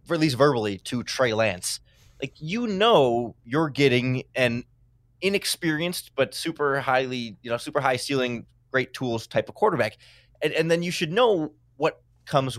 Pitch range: 120-150 Hz